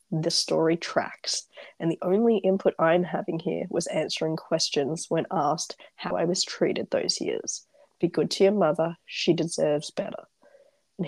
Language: English